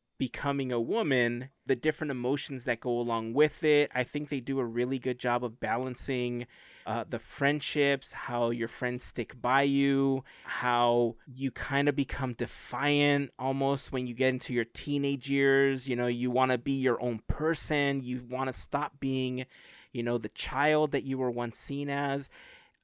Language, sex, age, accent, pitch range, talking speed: English, male, 30-49, American, 120-140 Hz, 180 wpm